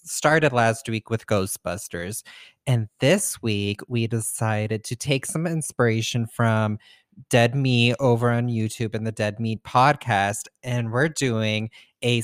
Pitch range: 110-130 Hz